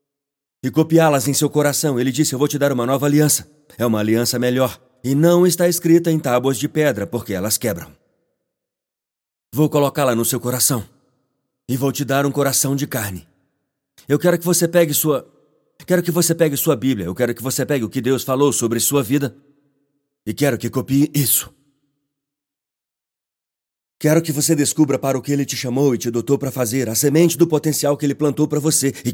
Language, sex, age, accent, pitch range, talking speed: Portuguese, male, 40-59, Brazilian, 125-150 Hz, 200 wpm